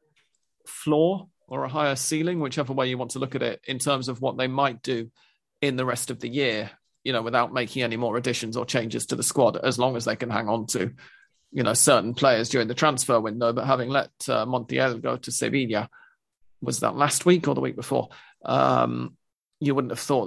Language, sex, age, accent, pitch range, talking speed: English, male, 40-59, British, 120-150 Hz, 220 wpm